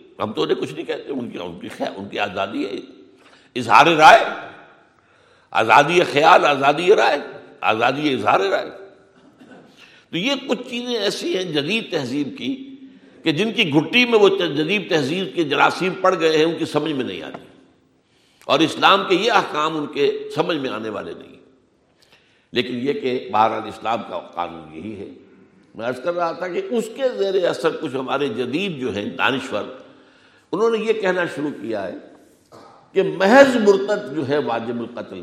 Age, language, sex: 60-79, Urdu, male